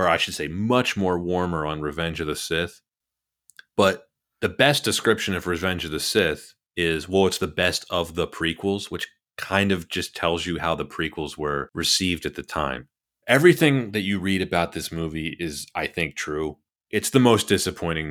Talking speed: 190 wpm